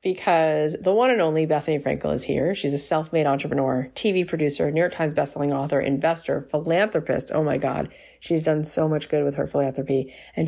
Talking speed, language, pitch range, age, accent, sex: 195 wpm, English, 145-175 Hz, 30-49, American, female